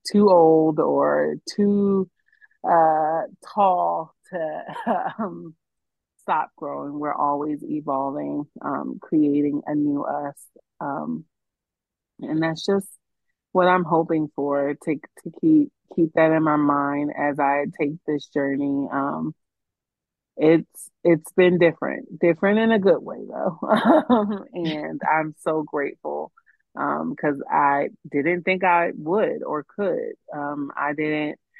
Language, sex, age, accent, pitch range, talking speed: English, female, 30-49, American, 145-170 Hz, 125 wpm